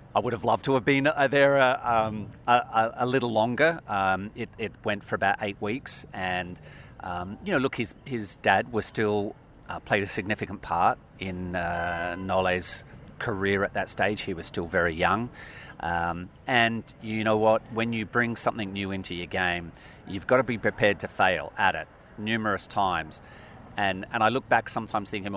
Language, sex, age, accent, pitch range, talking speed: English, male, 40-59, Australian, 95-115 Hz, 190 wpm